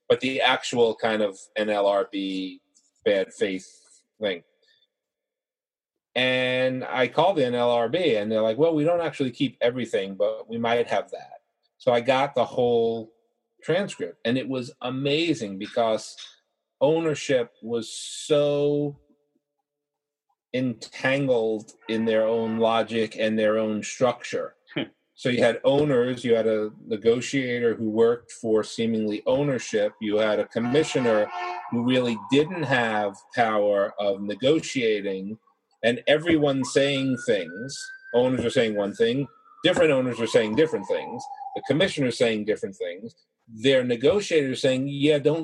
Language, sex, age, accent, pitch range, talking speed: English, male, 40-59, American, 115-160 Hz, 130 wpm